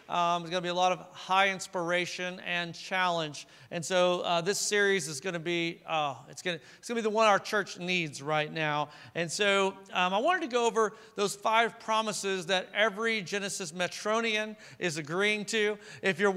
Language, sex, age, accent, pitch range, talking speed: English, male, 40-59, American, 180-215 Hz, 190 wpm